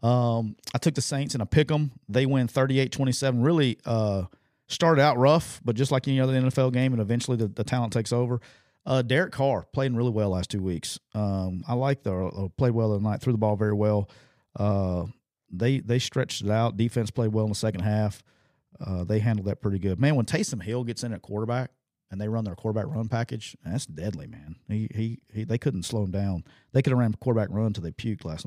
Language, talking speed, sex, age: English, 240 wpm, male, 40-59